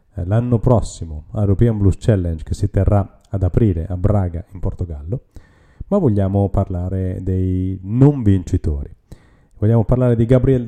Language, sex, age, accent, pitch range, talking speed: Italian, male, 30-49, native, 95-115 Hz, 140 wpm